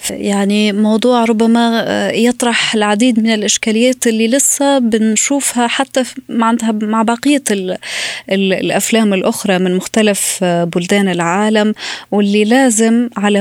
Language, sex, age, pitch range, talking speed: Arabic, female, 20-39, 205-250 Hz, 100 wpm